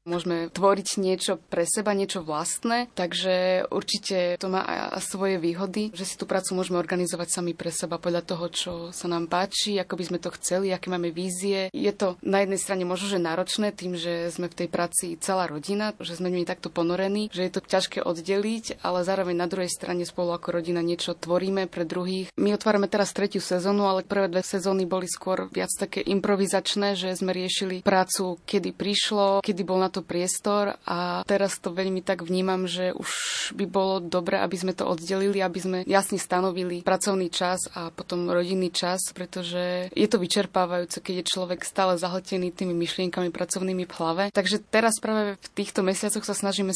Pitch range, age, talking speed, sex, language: 180-195 Hz, 20-39, 190 wpm, female, Slovak